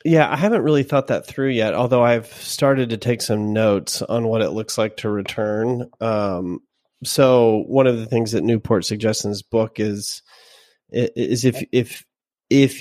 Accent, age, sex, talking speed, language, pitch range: American, 30-49, male, 185 wpm, English, 110-125 Hz